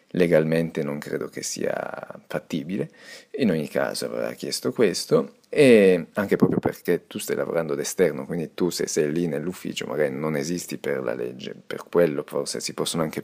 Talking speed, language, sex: 175 wpm, Italian, male